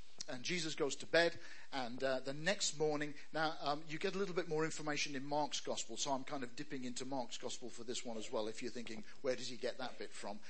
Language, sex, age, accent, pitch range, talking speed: English, male, 50-69, British, 135-175 Hz, 255 wpm